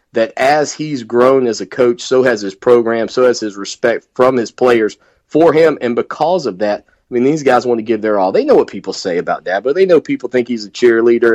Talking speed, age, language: 250 wpm, 30-49, English